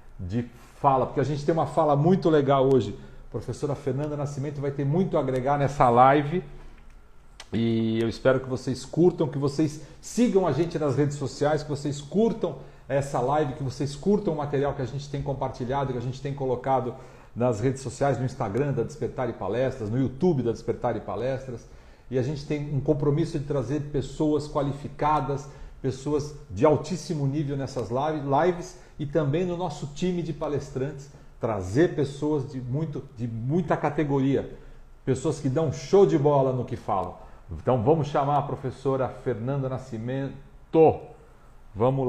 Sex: male